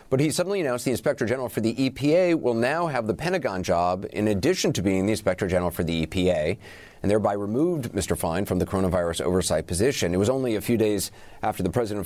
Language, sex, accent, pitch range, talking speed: English, male, American, 95-115 Hz, 225 wpm